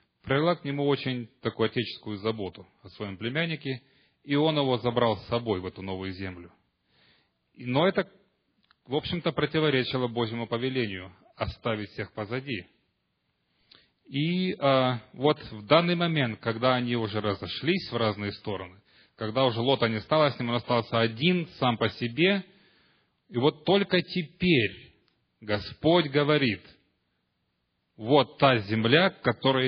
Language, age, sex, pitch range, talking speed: Russian, 30-49, male, 105-150 Hz, 140 wpm